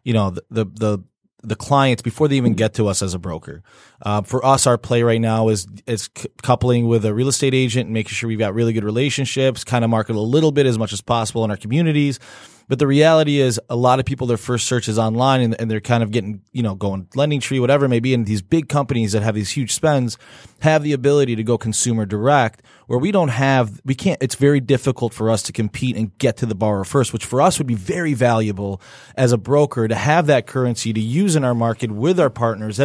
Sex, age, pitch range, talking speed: male, 20-39, 110-135 Hz, 255 wpm